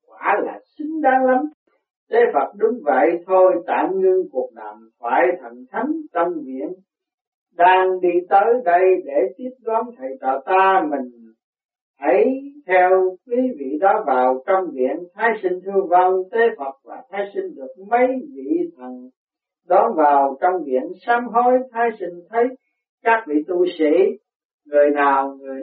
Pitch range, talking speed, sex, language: 150-245 Hz, 155 wpm, male, Vietnamese